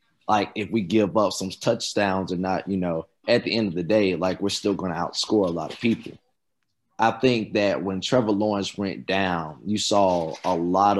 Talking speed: 215 wpm